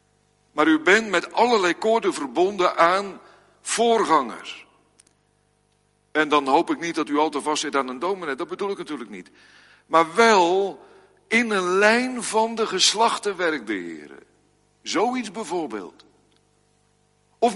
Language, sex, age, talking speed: Dutch, male, 60-79, 135 wpm